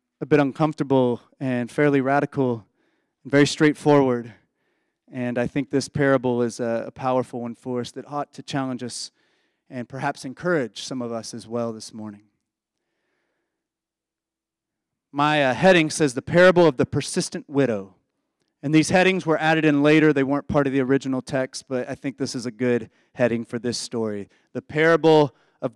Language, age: English, 30-49